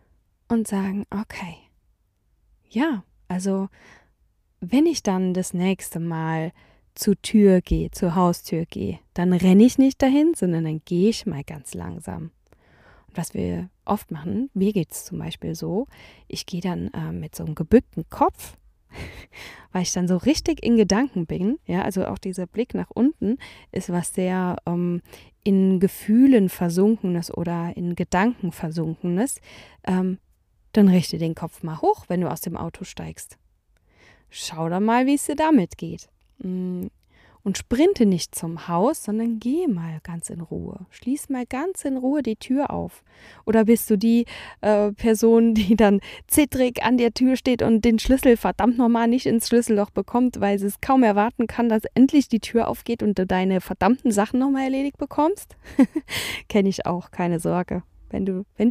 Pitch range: 175-235 Hz